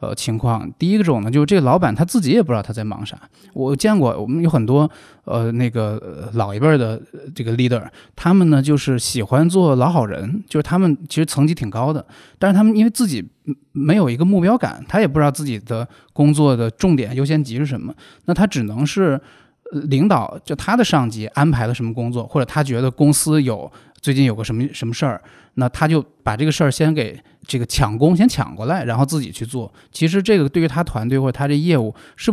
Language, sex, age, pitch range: Chinese, male, 20-39, 125-160 Hz